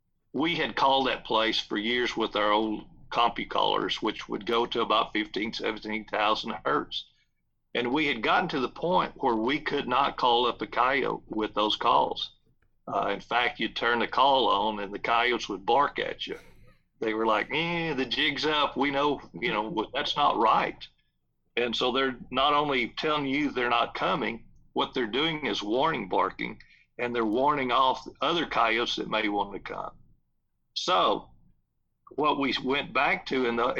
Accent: American